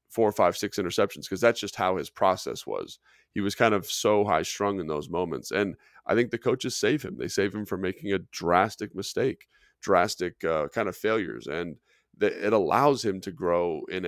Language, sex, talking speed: English, male, 215 wpm